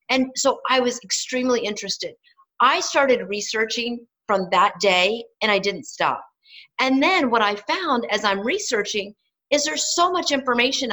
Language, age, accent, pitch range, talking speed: English, 40-59, American, 205-270 Hz, 160 wpm